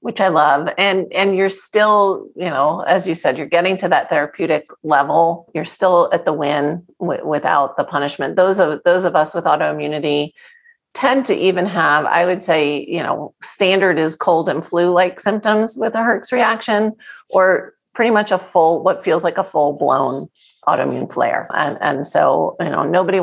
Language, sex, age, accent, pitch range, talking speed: English, female, 40-59, American, 160-200 Hz, 190 wpm